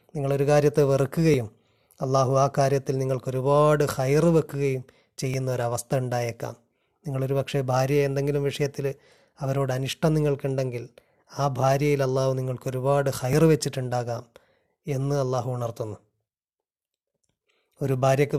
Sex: male